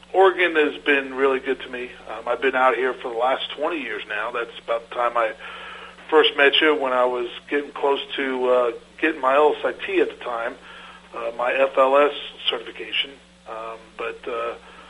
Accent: American